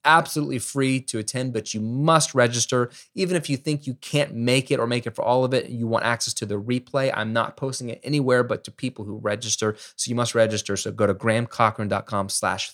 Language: English